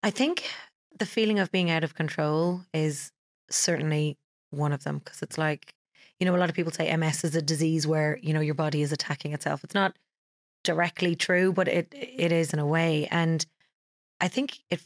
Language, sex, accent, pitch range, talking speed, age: English, female, Irish, 160-185 Hz, 205 wpm, 30-49